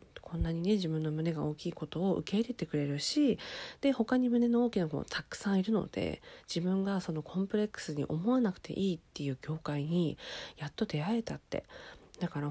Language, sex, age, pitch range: Japanese, female, 40-59, 150-210 Hz